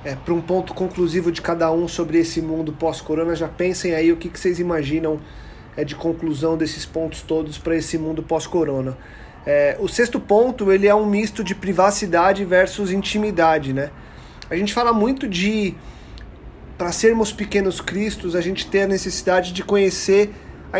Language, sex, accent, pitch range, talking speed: Portuguese, male, Brazilian, 170-210 Hz, 160 wpm